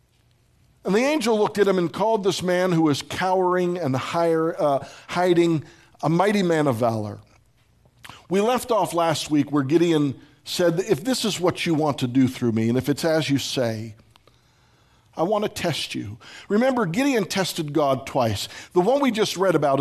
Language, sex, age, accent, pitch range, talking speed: English, male, 50-69, American, 125-180 Hz, 185 wpm